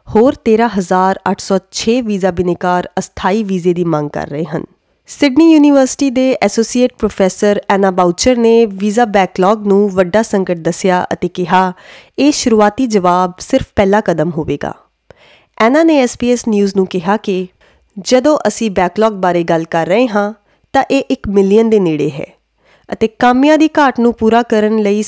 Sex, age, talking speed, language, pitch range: female, 20-39, 155 wpm, Punjabi, 190-235 Hz